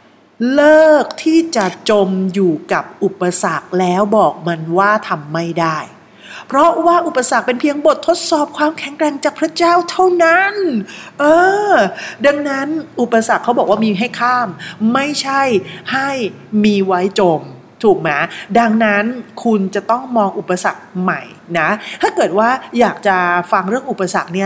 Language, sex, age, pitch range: Thai, female, 30-49, 195-275 Hz